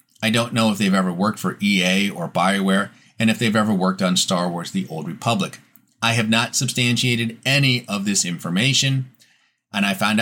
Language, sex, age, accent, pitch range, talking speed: English, male, 30-49, American, 105-155 Hz, 195 wpm